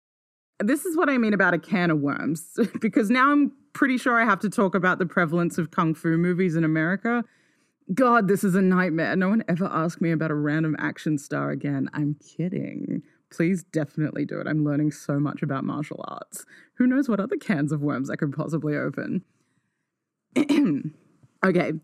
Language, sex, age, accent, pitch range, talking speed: English, female, 20-39, Australian, 150-210 Hz, 190 wpm